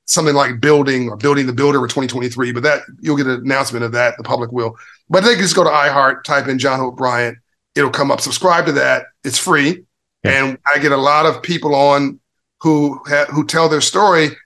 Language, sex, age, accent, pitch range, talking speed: English, male, 40-59, American, 125-150 Hz, 215 wpm